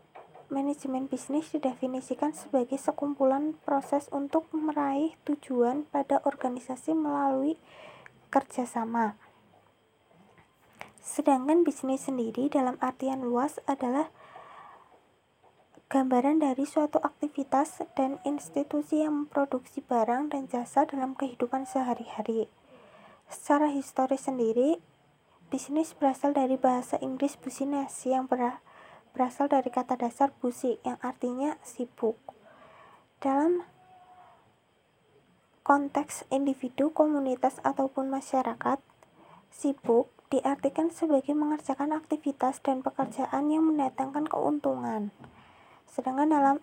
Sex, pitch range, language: female, 260-290 Hz, Indonesian